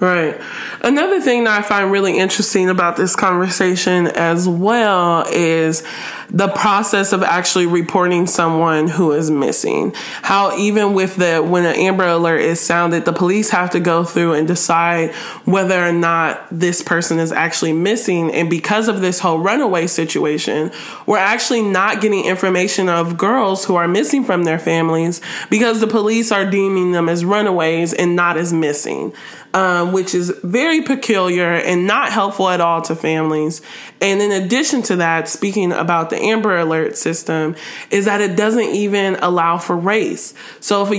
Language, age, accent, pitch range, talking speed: English, 20-39, American, 170-210 Hz, 170 wpm